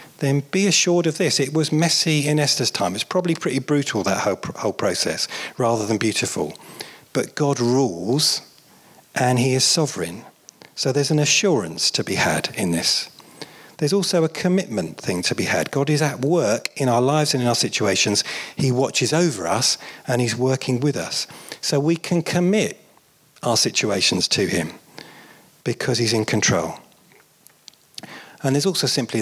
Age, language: 40-59, English